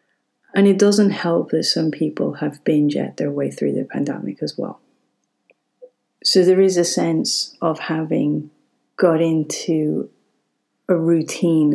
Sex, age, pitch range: female, 30-49, 150-180 Hz